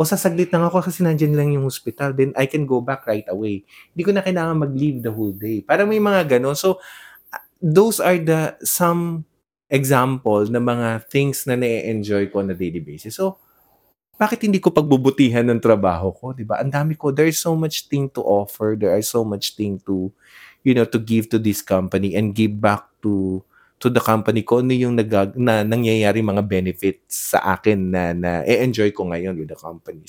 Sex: male